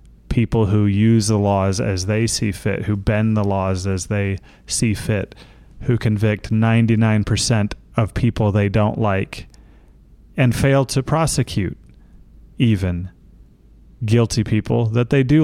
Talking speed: 135 wpm